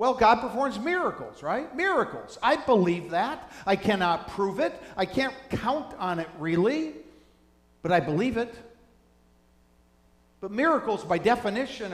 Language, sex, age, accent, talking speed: English, male, 50-69, American, 135 wpm